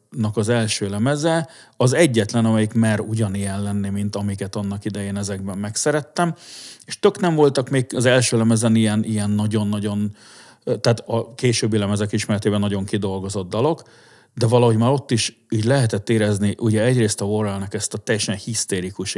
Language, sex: Hungarian, male